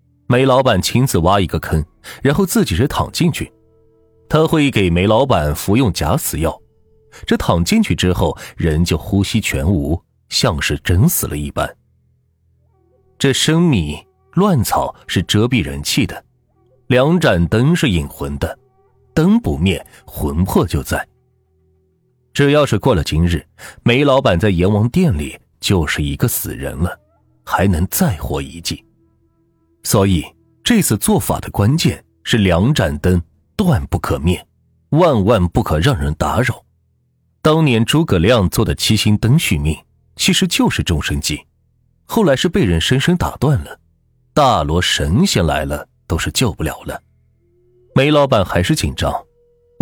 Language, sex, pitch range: Chinese, male, 85-130 Hz